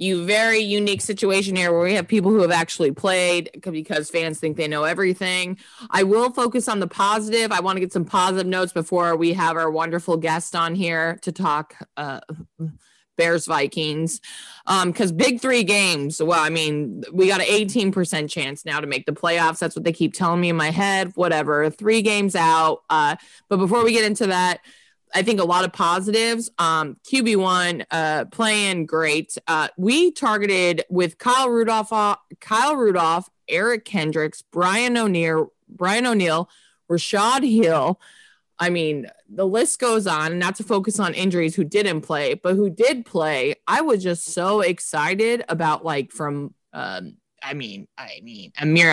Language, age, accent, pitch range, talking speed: English, 20-39, American, 165-215 Hz, 175 wpm